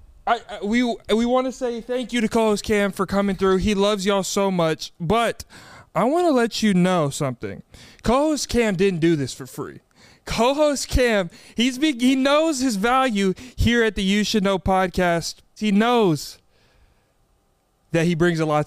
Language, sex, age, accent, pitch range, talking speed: English, male, 20-39, American, 155-220 Hz, 185 wpm